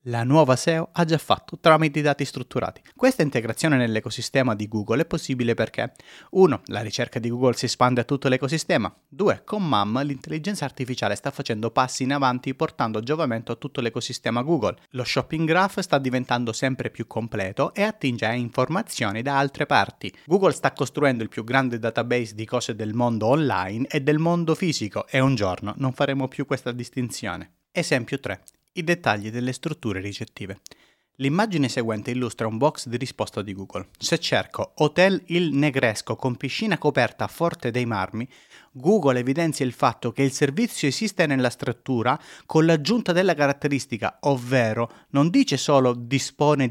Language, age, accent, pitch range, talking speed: Italian, 30-49, native, 115-150 Hz, 165 wpm